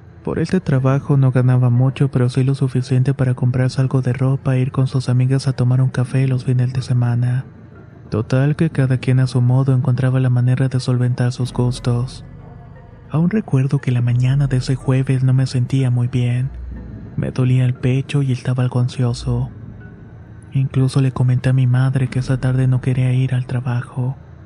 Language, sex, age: Spanish, male, 20-39